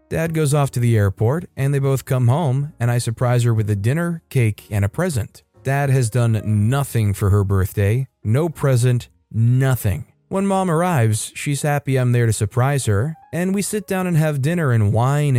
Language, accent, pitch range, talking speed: English, American, 110-145 Hz, 200 wpm